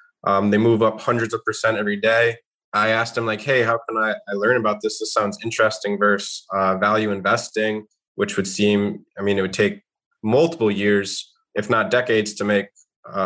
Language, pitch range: English, 105-115 Hz